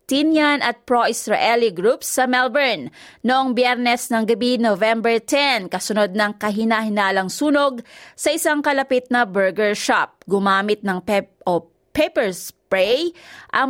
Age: 20-39